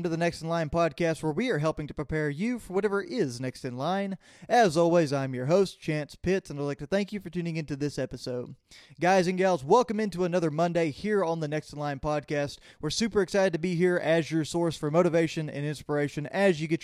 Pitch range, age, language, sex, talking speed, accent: 145-180 Hz, 20-39, English, male, 240 wpm, American